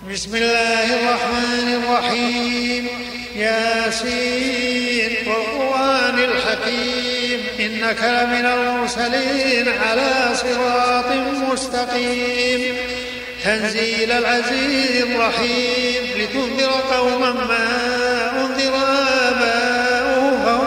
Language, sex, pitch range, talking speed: Arabic, male, 240-255 Hz, 65 wpm